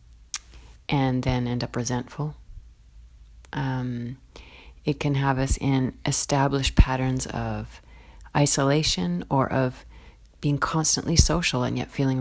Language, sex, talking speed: English, female, 115 wpm